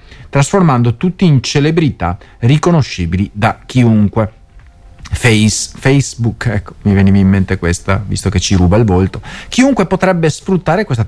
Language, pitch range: Italian, 100-155 Hz